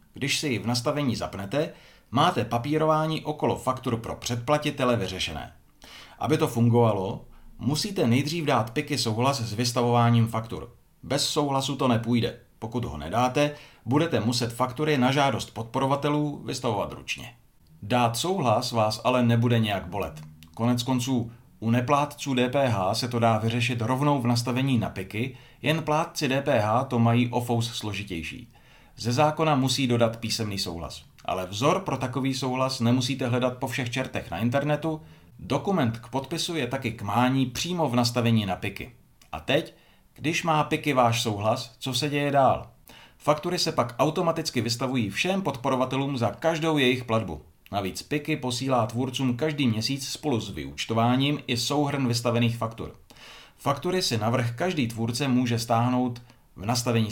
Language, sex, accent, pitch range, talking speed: Czech, male, native, 115-140 Hz, 145 wpm